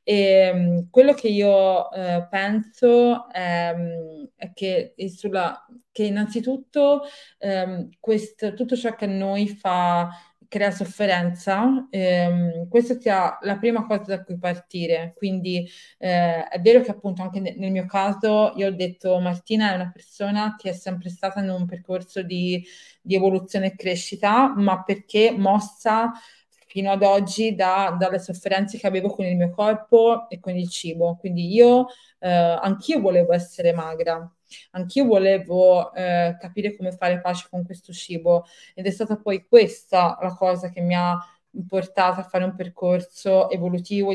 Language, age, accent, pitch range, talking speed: Italian, 30-49, native, 180-210 Hz, 150 wpm